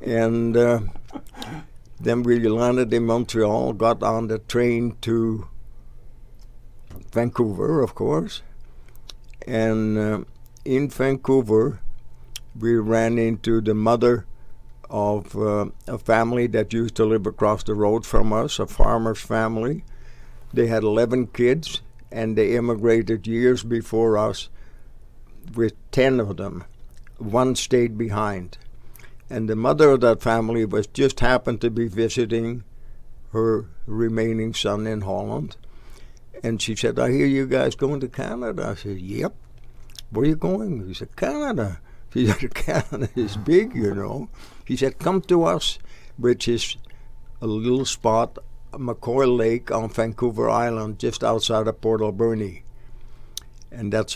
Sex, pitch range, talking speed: male, 110-120 Hz, 135 wpm